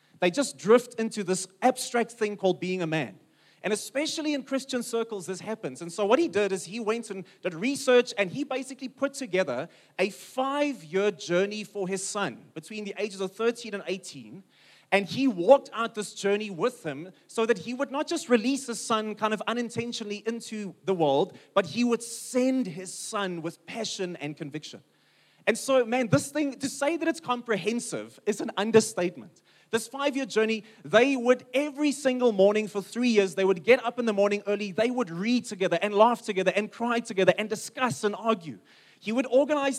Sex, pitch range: male, 190-245 Hz